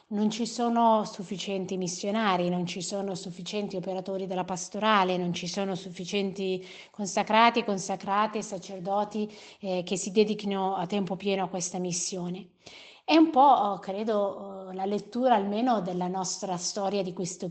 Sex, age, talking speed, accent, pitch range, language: female, 30-49, 140 wpm, native, 185-215 Hz, Italian